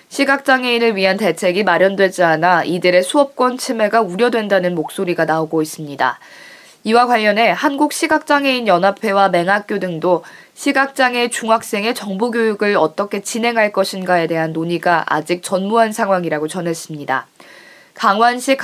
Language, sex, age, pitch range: Korean, female, 20-39, 180-245 Hz